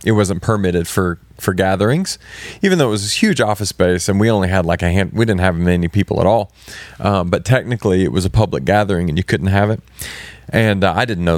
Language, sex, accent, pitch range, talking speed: English, male, American, 95-115 Hz, 245 wpm